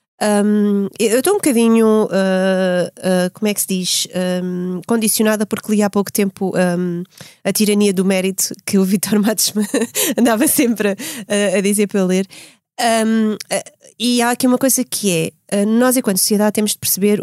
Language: Portuguese